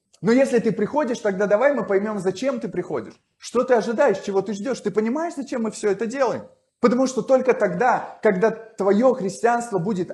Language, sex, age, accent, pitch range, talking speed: Russian, male, 20-39, native, 190-235 Hz, 190 wpm